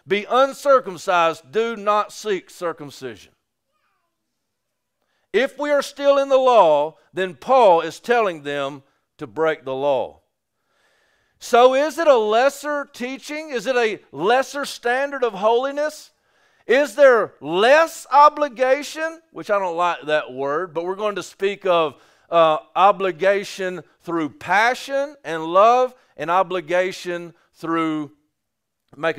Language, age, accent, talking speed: English, 50-69, American, 125 wpm